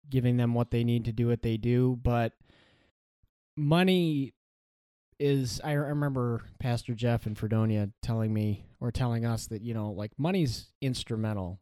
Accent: American